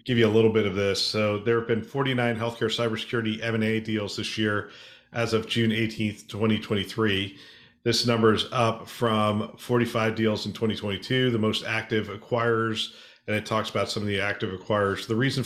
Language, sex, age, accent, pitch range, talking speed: English, male, 40-59, American, 105-115 Hz, 185 wpm